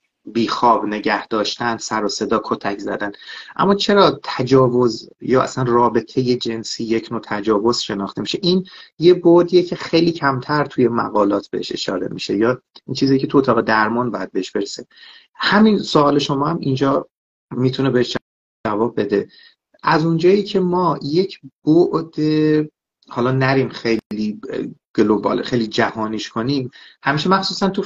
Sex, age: male, 30-49